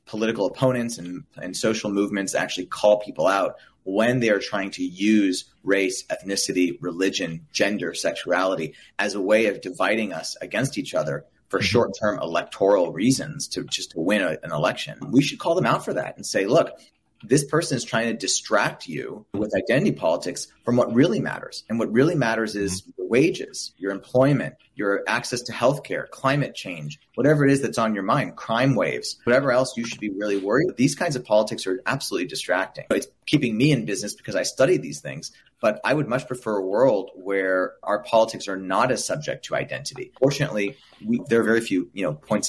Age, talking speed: 30-49, 195 wpm